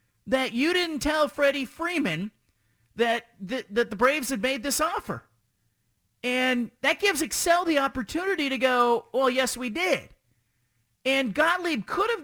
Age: 40-59